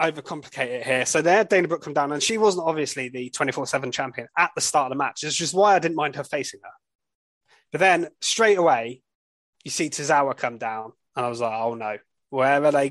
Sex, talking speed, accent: male, 230 wpm, British